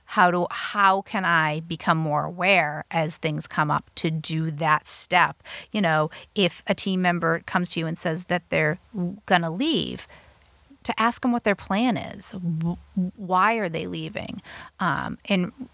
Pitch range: 165-205 Hz